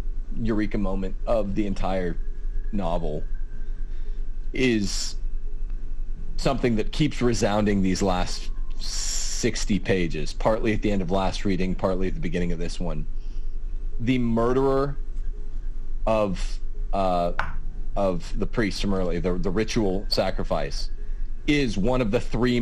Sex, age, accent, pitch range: male, 40-59, American, 95-115 Hz